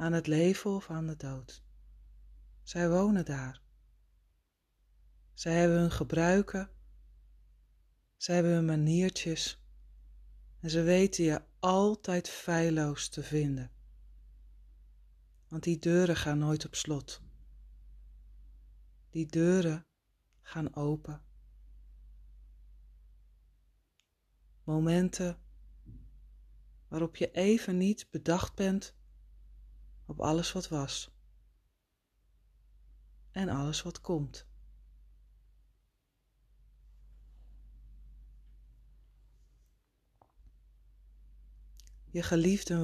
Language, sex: Dutch, female